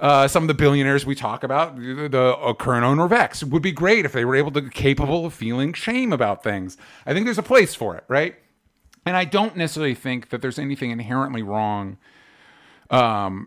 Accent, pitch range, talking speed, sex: American, 110-140 Hz, 210 wpm, male